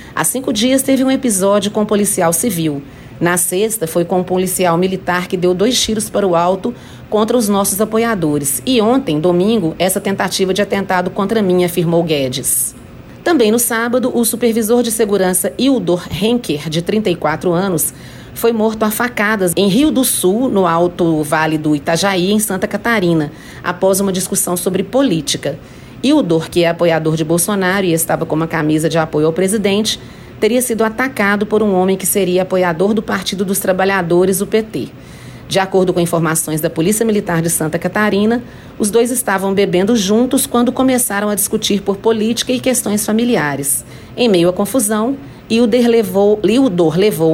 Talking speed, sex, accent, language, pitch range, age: 165 wpm, female, Brazilian, Portuguese, 175-225 Hz, 40-59